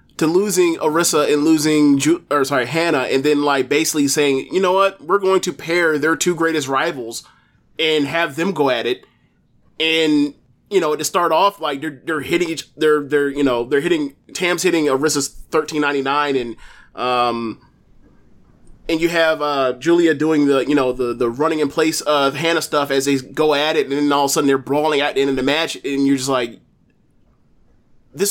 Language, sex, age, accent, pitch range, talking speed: English, male, 20-39, American, 135-170 Hz, 205 wpm